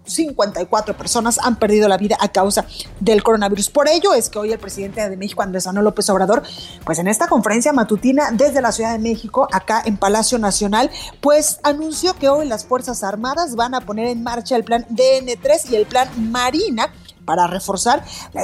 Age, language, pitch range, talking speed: 30-49, Spanish, 210-275 Hz, 195 wpm